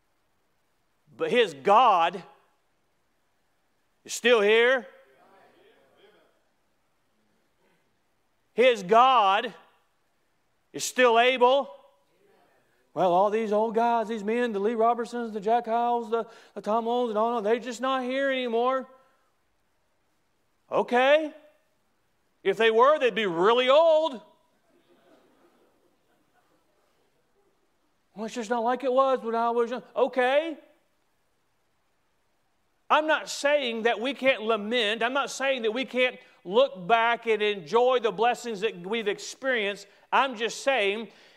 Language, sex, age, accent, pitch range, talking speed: English, male, 40-59, American, 215-255 Hz, 115 wpm